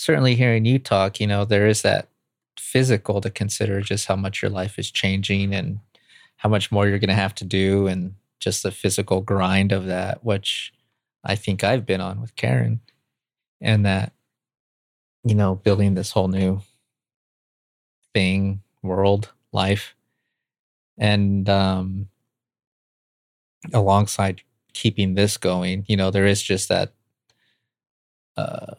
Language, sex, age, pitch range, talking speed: English, male, 30-49, 95-115 Hz, 140 wpm